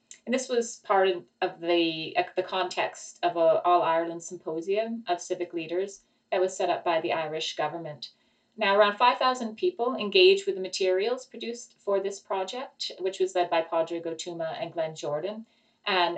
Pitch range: 170-215 Hz